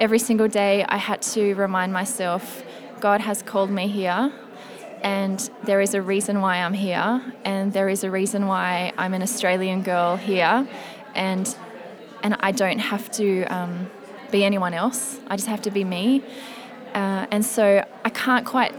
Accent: Australian